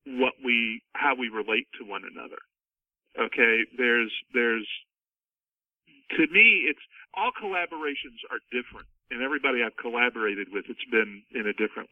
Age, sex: 50-69, male